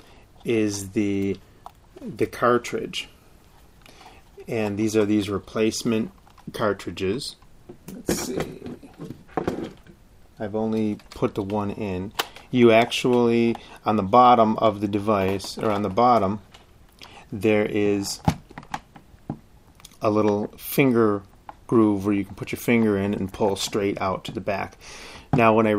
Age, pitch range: 30-49, 100-115 Hz